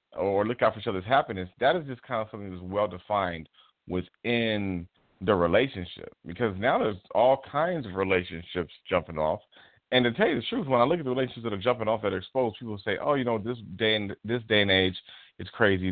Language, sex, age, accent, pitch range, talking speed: English, male, 40-59, American, 90-115 Hz, 225 wpm